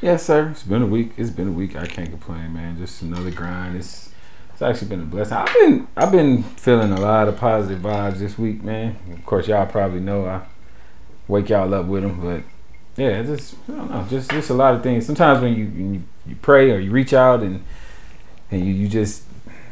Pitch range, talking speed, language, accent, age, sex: 95-120 Hz, 230 wpm, English, American, 30-49, male